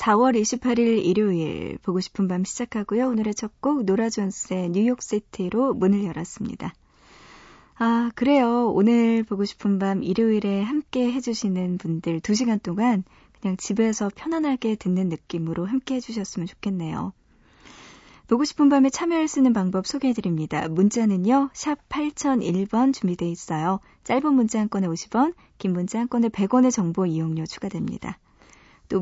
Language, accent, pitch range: Korean, native, 185-250 Hz